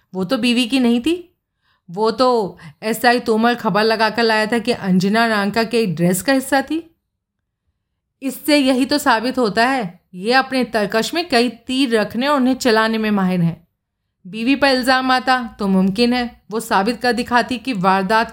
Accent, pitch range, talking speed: native, 200-260 Hz, 185 wpm